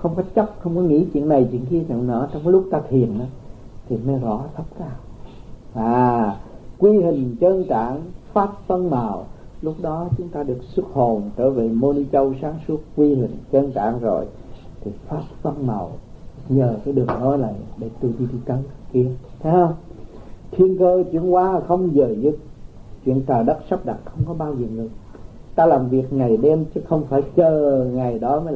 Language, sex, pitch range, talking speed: Vietnamese, male, 120-160 Hz, 195 wpm